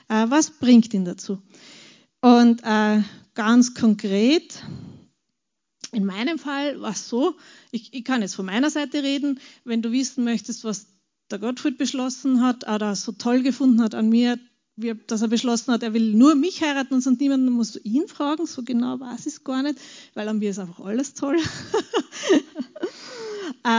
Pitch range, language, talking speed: 225-290 Hz, German, 180 wpm